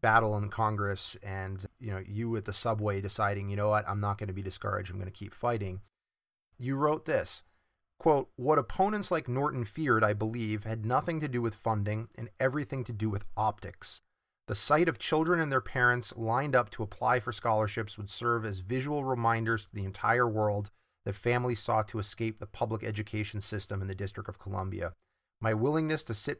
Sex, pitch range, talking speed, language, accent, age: male, 105-135 Hz, 200 wpm, English, American, 30-49